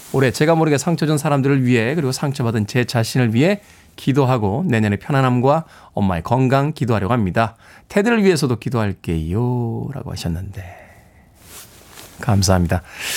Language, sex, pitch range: Korean, male, 115-150 Hz